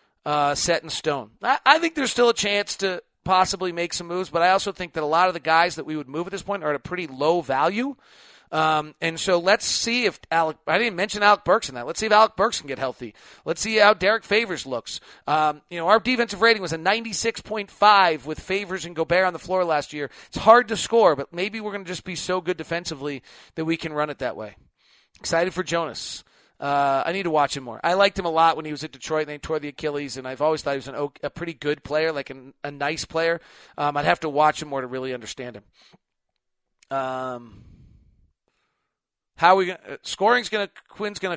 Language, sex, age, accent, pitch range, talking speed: English, male, 40-59, American, 145-185 Hz, 240 wpm